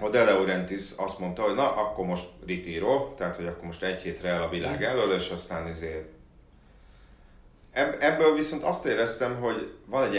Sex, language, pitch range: male, Hungarian, 85-105 Hz